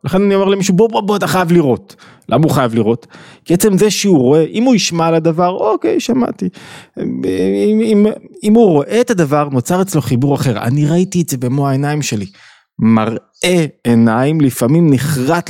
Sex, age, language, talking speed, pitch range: male, 20-39, Hebrew, 185 wpm, 125-170 Hz